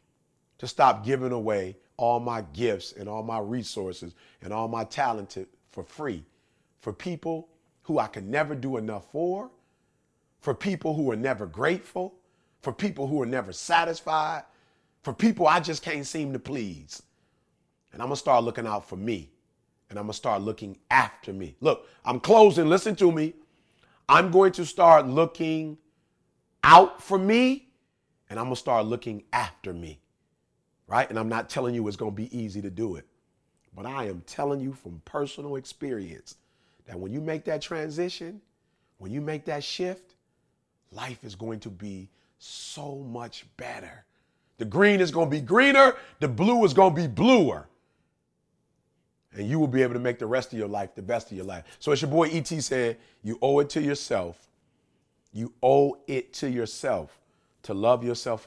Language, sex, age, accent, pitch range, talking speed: English, male, 40-59, American, 110-165 Hz, 175 wpm